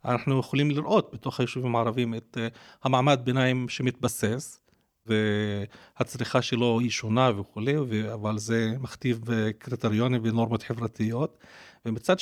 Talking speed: 110 wpm